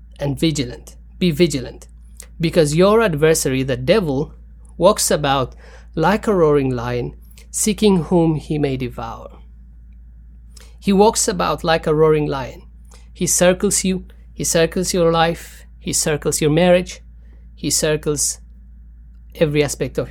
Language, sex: English, male